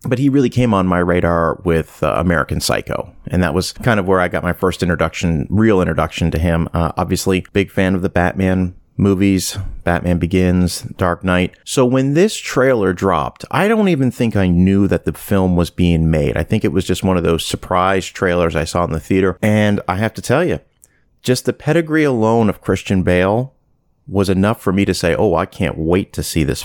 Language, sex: English, male